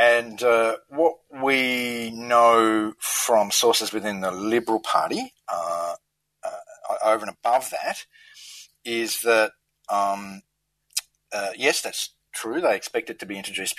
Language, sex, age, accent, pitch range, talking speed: English, male, 40-59, Australian, 105-150 Hz, 130 wpm